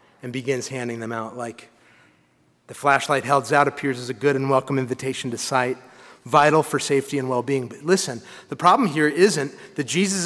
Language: English